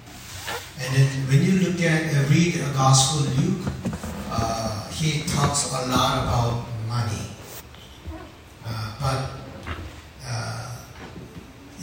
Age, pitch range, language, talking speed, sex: 60-79, 110-150 Hz, English, 110 wpm, male